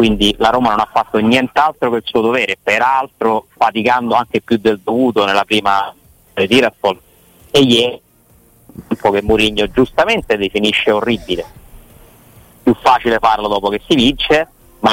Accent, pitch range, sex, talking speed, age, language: native, 100-120 Hz, male, 145 wpm, 30-49, Italian